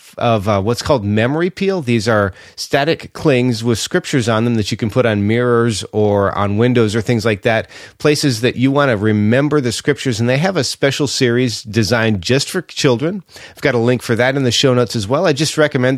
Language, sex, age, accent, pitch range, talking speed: English, male, 40-59, American, 110-135 Hz, 225 wpm